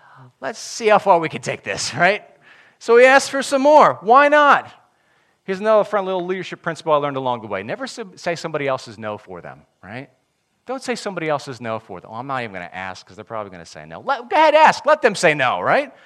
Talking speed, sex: 245 wpm, male